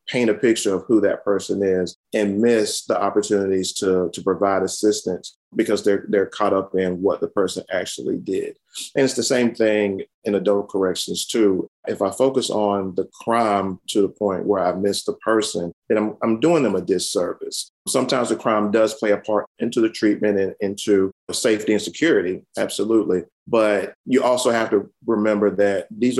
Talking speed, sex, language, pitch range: 185 wpm, male, English, 100-115 Hz